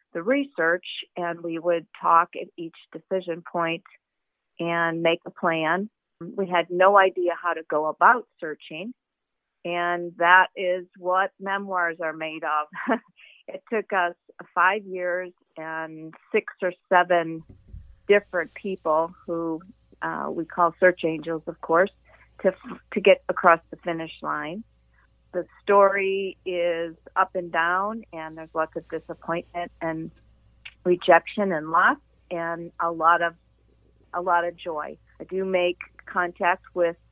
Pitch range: 160-180 Hz